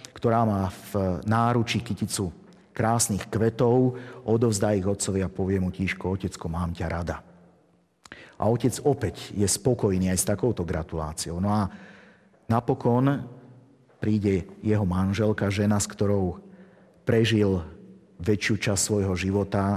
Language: Slovak